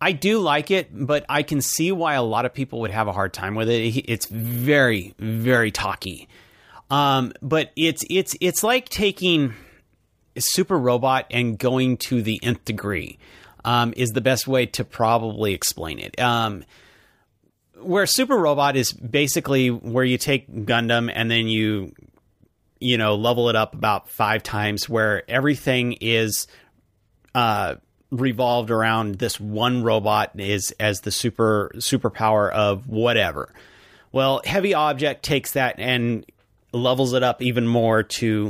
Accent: American